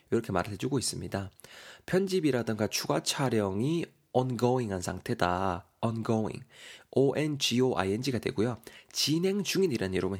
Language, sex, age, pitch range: Korean, male, 20-39, 105-145 Hz